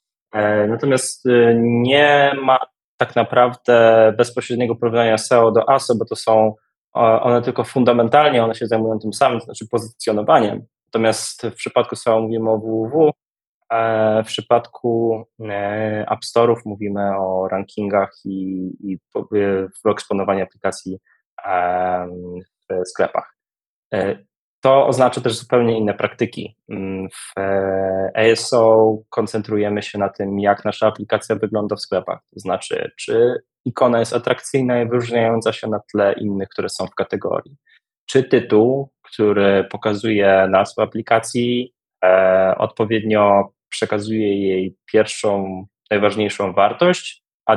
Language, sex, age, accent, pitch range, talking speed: Polish, male, 20-39, native, 100-120 Hz, 115 wpm